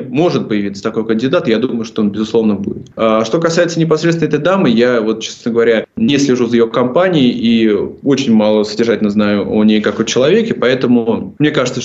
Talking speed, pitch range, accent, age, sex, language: 185 wpm, 110-125 Hz, native, 20-39, male, Russian